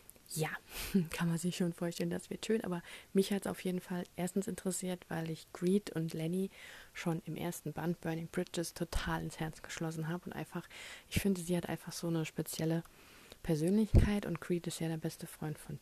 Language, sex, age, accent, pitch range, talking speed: German, female, 30-49, German, 170-200 Hz, 200 wpm